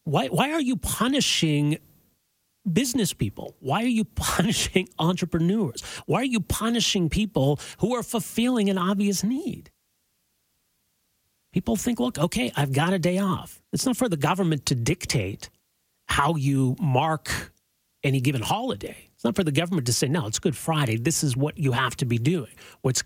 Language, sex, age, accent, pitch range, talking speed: English, male, 40-59, American, 135-205 Hz, 170 wpm